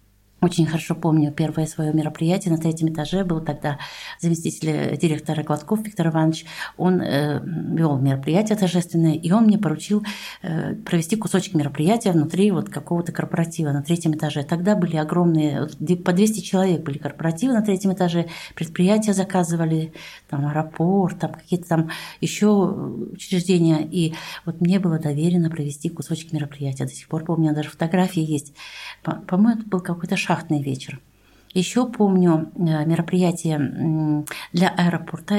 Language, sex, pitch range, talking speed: Russian, female, 160-190 Hz, 140 wpm